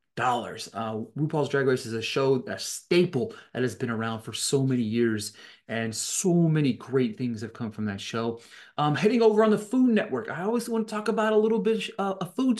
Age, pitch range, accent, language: 30-49, 120-190 Hz, American, English